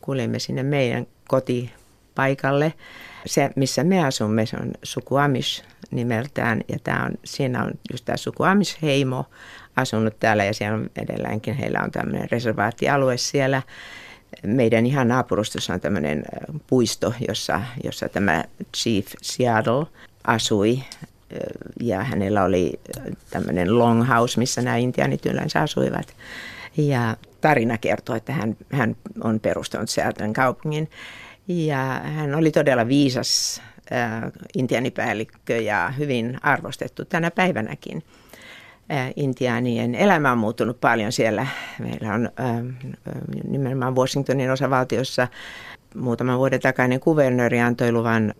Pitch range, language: 115-135 Hz, Finnish